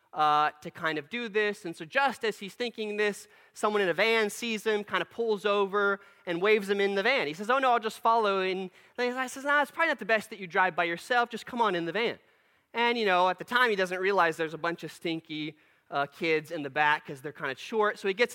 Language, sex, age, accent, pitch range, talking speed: English, male, 20-39, American, 150-215 Hz, 280 wpm